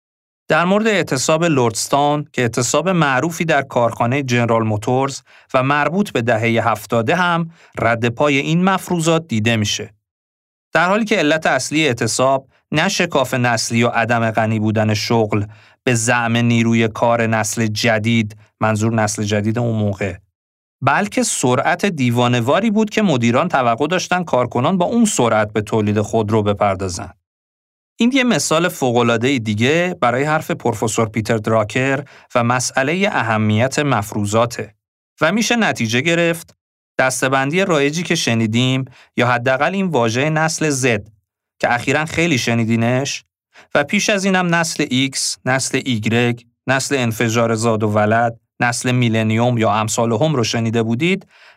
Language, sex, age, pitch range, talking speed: Persian, male, 40-59, 110-150 Hz, 135 wpm